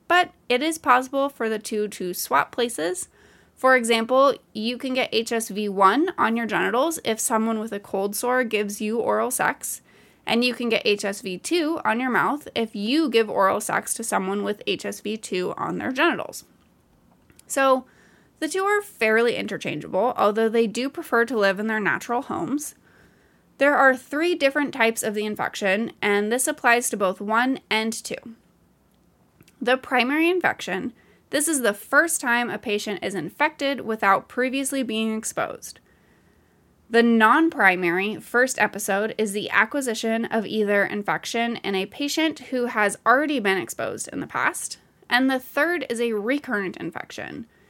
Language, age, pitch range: English, 20-39, 205-265 Hz